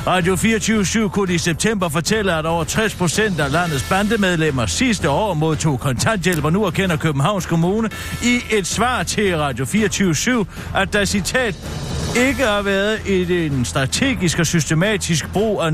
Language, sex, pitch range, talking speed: Danish, male, 150-195 Hz, 155 wpm